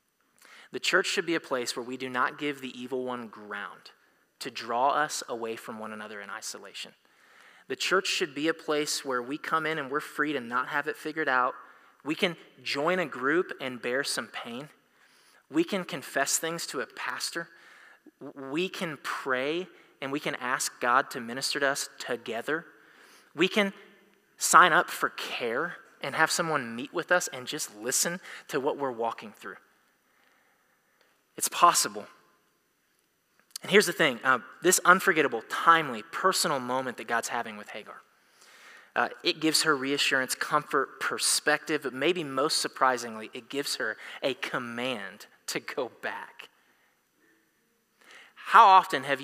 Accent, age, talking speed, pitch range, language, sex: American, 20-39, 160 wpm, 125-165 Hz, English, male